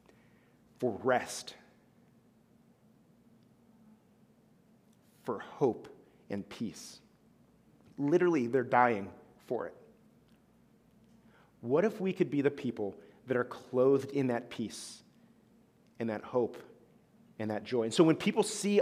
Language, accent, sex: English, American, male